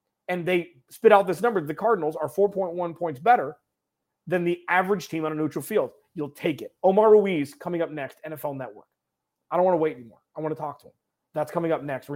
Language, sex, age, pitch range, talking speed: English, male, 30-49, 150-195 Hz, 230 wpm